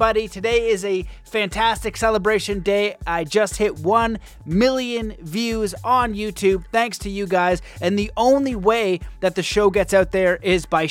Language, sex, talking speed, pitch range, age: English, male, 165 wpm, 175-210 Hz, 30-49